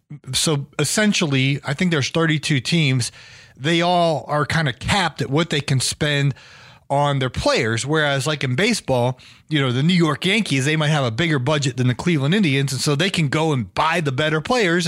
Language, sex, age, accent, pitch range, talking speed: English, male, 30-49, American, 140-180 Hz, 205 wpm